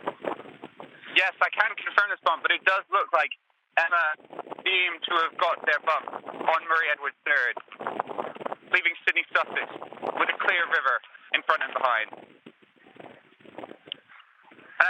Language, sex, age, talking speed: English, male, 30-49, 135 wpm